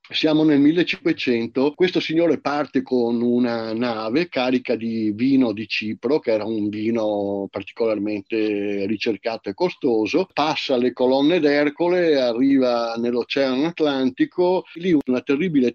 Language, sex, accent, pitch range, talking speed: Italian, male, native, 125-165 Hz, 120 wpm